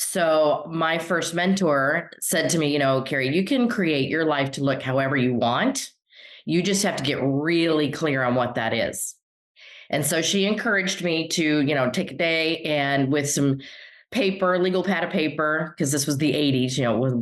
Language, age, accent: English, 30-49, American